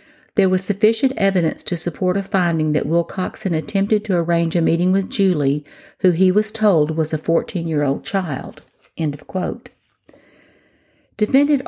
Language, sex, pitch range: English, female, 165-200 Hz